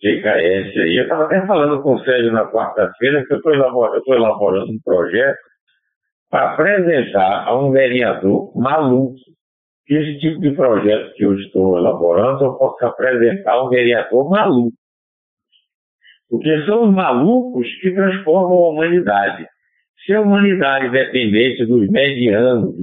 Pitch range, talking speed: 120-170 Hz, 140 wpm